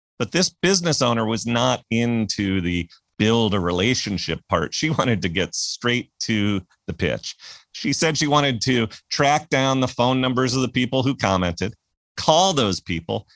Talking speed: 170 wpm